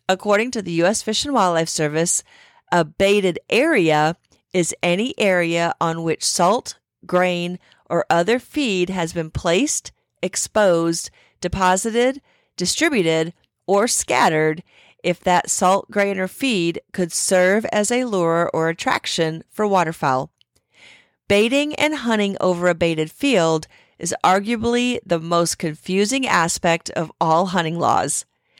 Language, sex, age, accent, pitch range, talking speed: English, female, 40-59, American, 165-210 Hz, 130 wpm